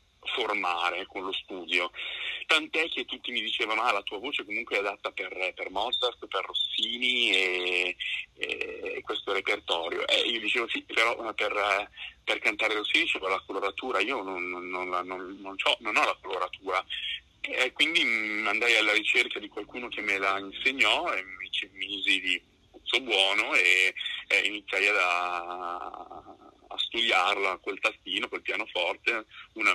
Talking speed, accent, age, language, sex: 160 wpm, native, 30-49, Italian, male